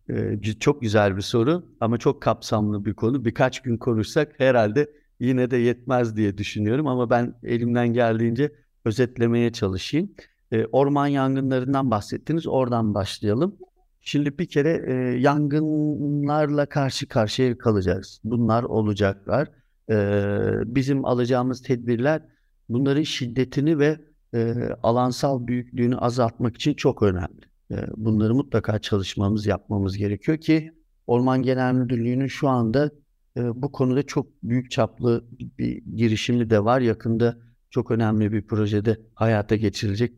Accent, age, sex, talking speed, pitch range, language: native, 50-69, male, 115 wpm, 110-140 Hz, Turkish